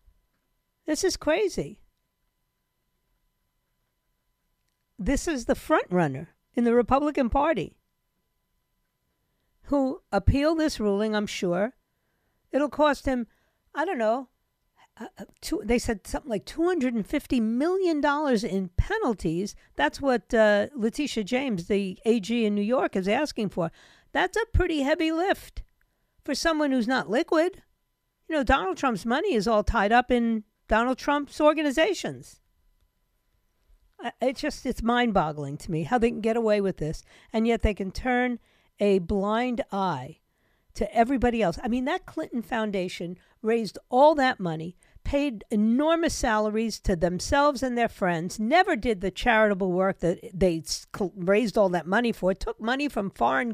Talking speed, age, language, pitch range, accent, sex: 140 wpm, 50-69, English, 200-285 Hz, American, female